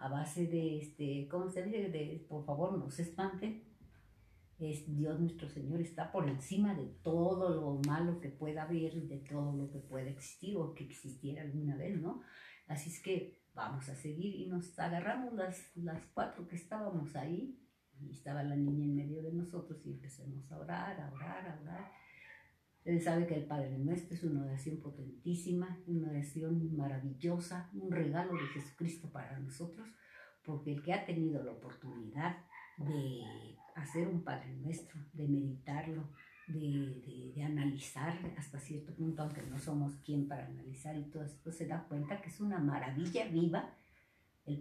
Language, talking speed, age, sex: Spanish, 170 wpm, 50-69, female